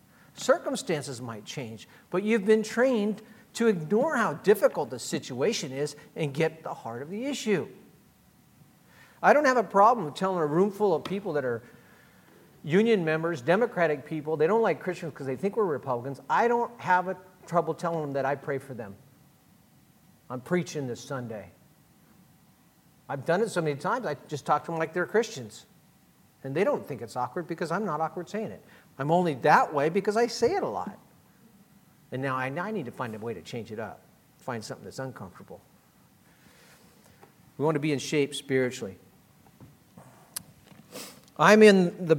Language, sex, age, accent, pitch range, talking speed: English, male, 50-69, American, 140-190 Hz, 180 wpm